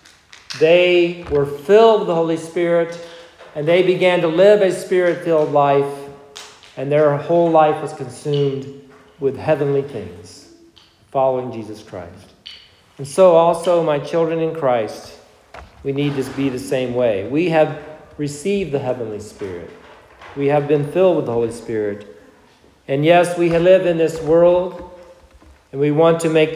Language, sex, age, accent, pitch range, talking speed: English, male, 50-69, American, 135-165 Hz, 150 wpm